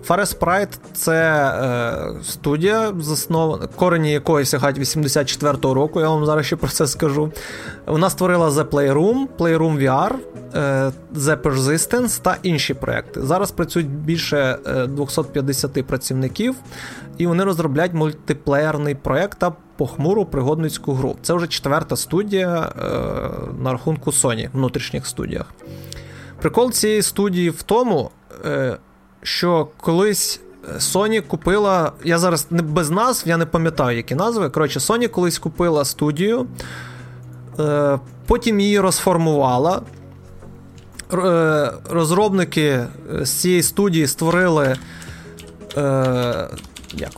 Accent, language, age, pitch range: native, Ukrainian, 20-39, 140-180 Hz